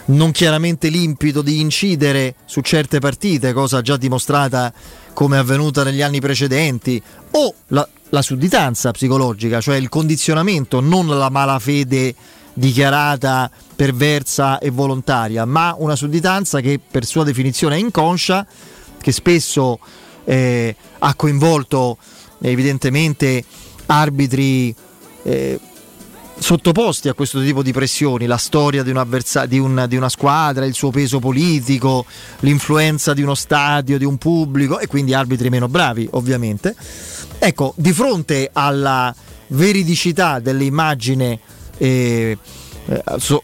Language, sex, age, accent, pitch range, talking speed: Italian, male, 30-49, native, 130-160 Hz, 120 wpm